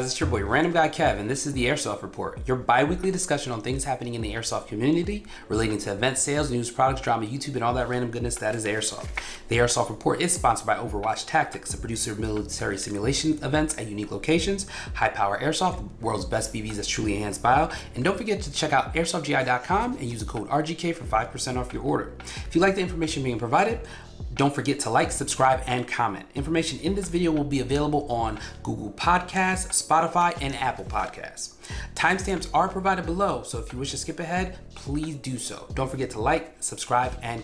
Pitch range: 120-165 Hz